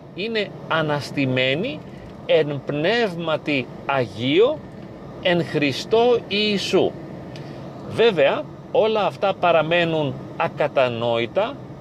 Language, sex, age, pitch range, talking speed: Greek, male, 40-59, 135-200 Hz, 65 wpm